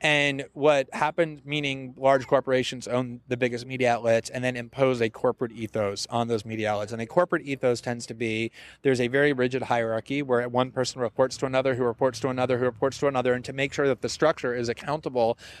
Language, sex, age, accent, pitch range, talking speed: German, male, 30-49, American, 125-145 Hz, 215 wpm